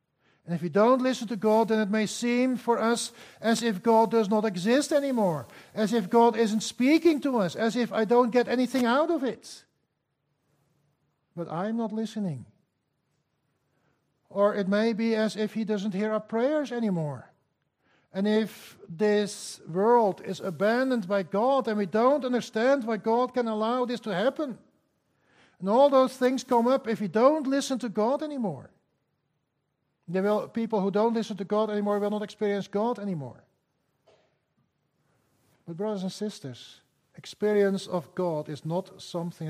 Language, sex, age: English, male, 60-79